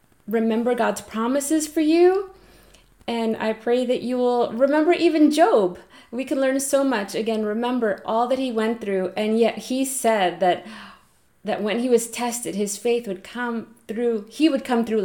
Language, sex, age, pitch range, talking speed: English, female, 20-39, 200-245 Hz, 180 wpm